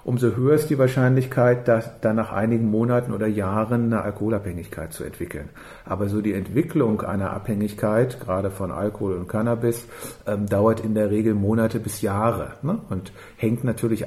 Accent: German